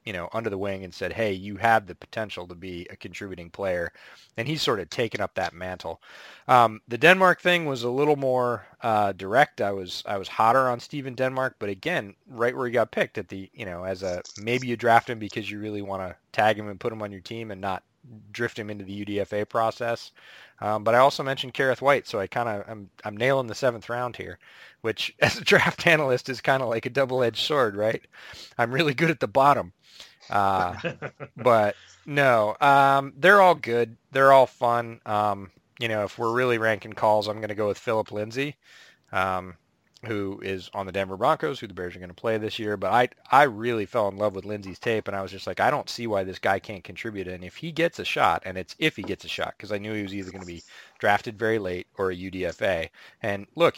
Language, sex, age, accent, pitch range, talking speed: English, male, 30-49, American, 100-125 Hz, 240 wpm